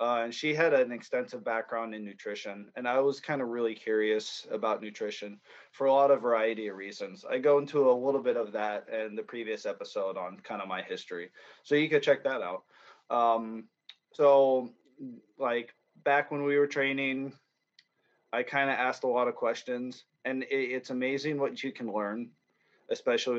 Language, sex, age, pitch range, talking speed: English, male, 20-39, 110-140 Hz, 185 wpm